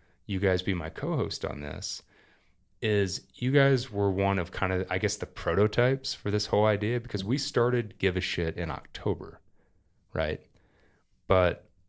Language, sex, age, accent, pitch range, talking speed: English, male, 30-49, American, 85-105 Hz, 165 wpm